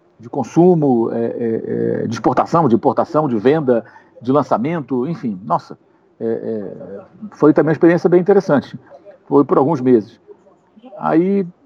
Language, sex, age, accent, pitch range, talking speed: Portuguese, male, 50-69, Brazilian, 135-205 Hz, 140 wpm